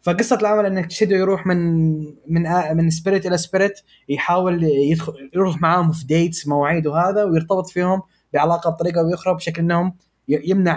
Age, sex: 20-39, male